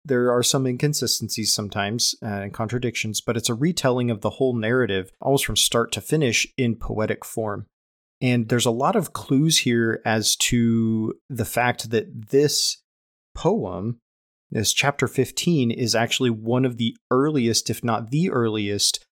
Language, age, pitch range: English, 30-49, 105-125 Hz